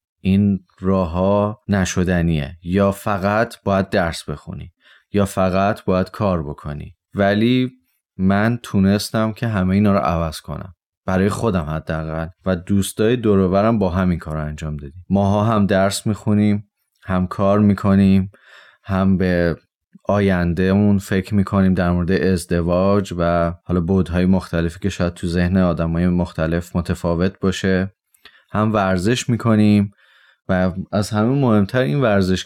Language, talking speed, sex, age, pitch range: Persian, 135 wpm, male, 30-49, 90-105 Hz